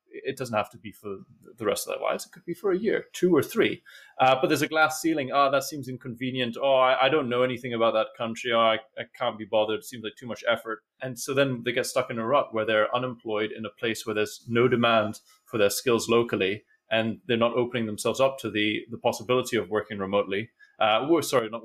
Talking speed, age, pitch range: 250 wpm, 30-49, 110-135 Hz